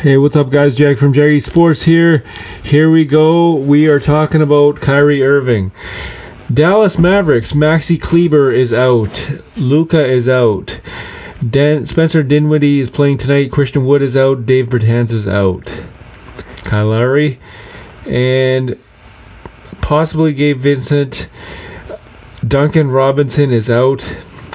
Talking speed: 125 wpm